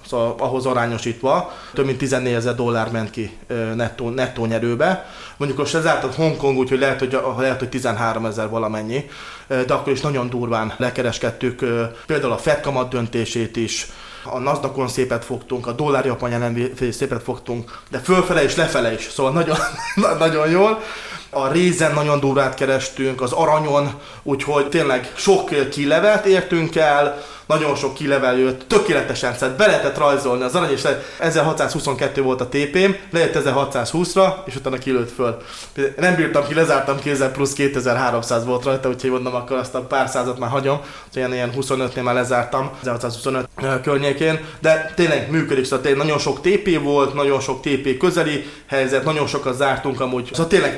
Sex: male